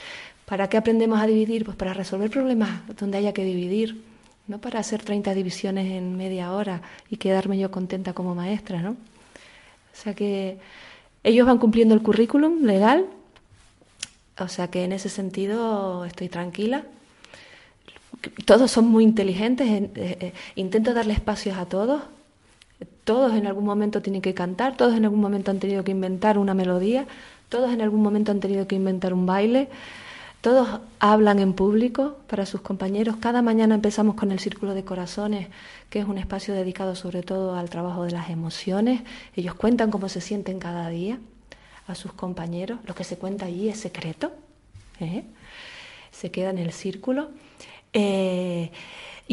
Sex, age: female, 30-49